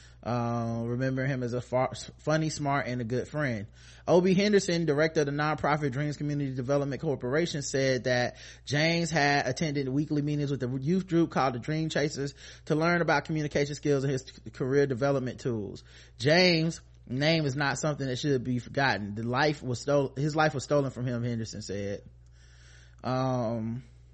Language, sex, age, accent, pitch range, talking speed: English, male, 20-39, American, 115-160 Hz, 170 wpm